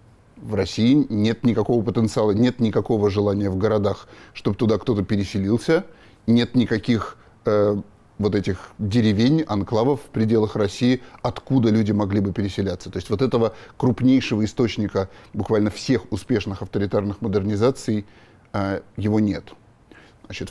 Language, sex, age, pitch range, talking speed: Russian, male, 30-49, 100-115 Hz, 130 wpm